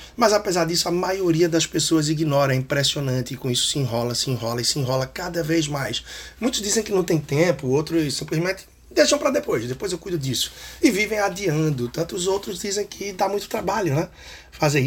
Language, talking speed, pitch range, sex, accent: Portuguese, 200 wpm, 130-175 Hz, male, Brazilian